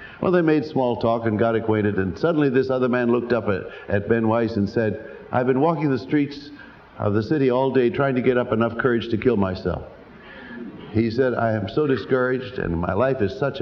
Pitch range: 100-130 Hz